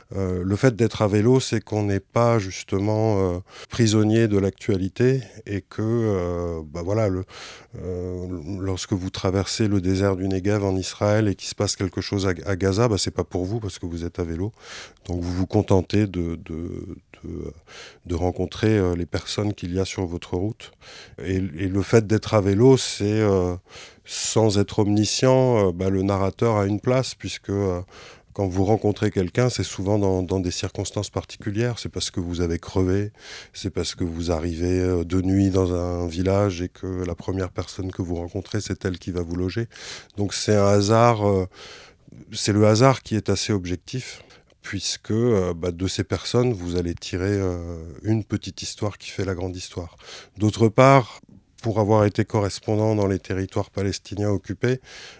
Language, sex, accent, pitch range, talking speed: French, male, French, 95-110 Hz, 185 wpm